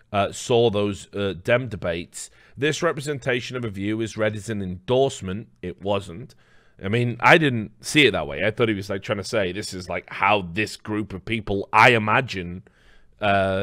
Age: 30-49